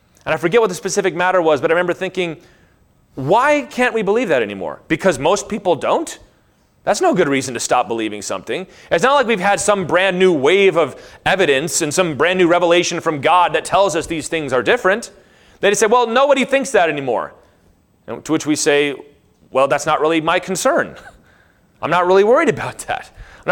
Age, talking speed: 30-49, 205 wpm